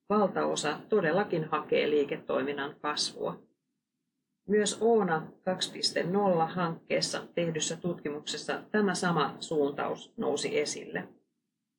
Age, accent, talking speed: 30-49, native, 75 wpm